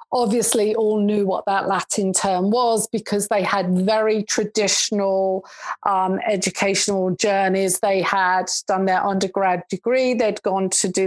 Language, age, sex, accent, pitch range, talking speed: English, 40-59, female, British, 200-240 Hz, 140 wpm